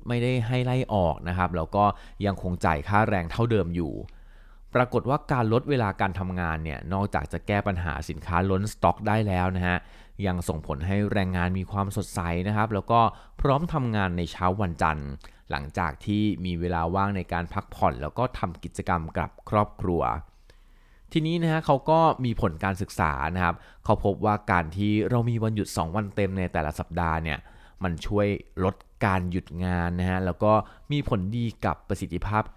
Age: 20-39